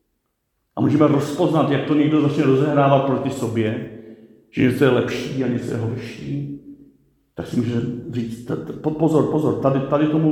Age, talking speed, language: 50-69, 150 wpm, Czech